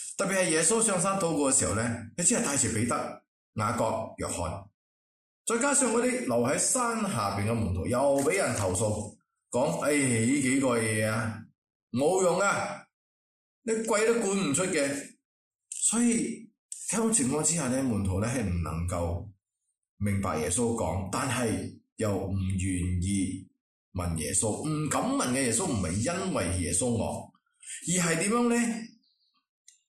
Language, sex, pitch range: English, male, 95-155 Hz